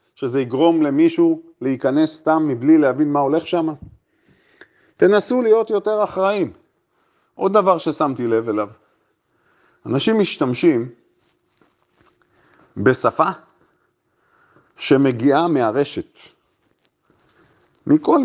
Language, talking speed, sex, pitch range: Hebrew, 80 wpm, male, 135-190 Hz